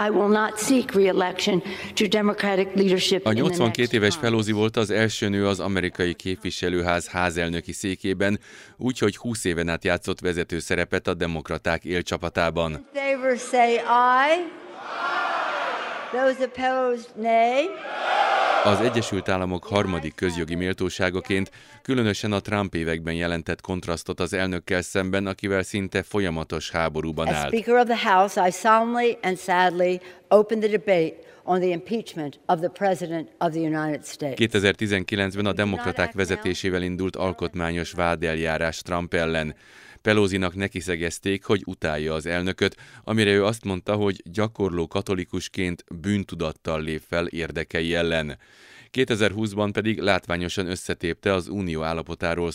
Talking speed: 90 wpm